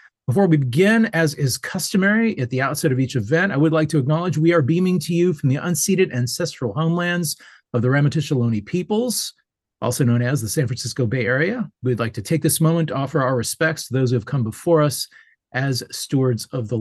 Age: 40-59